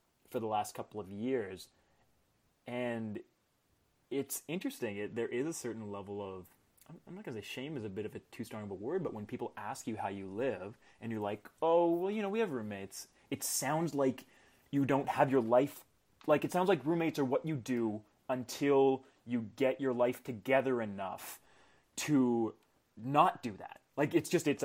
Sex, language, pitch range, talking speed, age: male, English, 105-135 Hz, 200 wpm, 20-39